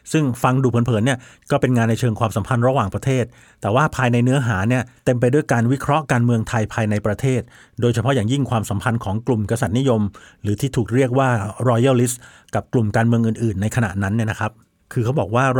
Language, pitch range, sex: Thai, 110-135 Hz, male